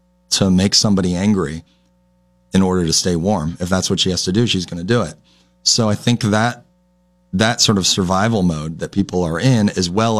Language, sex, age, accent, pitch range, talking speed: English, male, 30-49, American, 75-95 Hz, 210 wpm